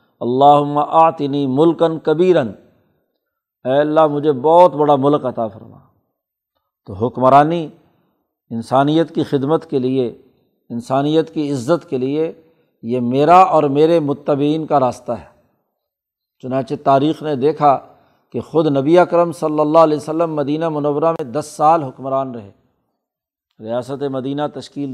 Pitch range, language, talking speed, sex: 130-160 Hz, Urdu, 130 wpm, male